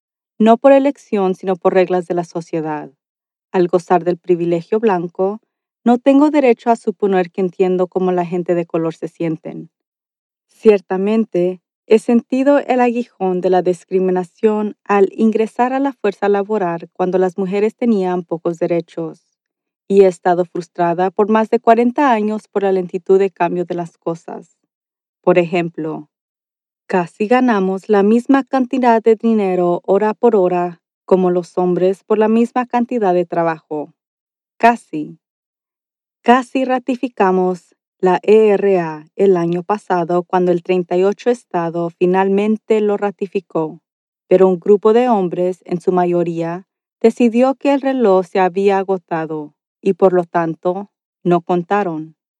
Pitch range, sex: 175-220 Hz, female